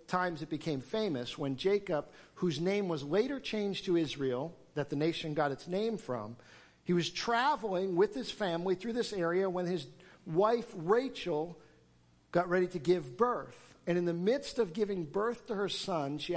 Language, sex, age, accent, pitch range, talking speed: English, male, 50-69, American, 155-215 Hz, 180 wpm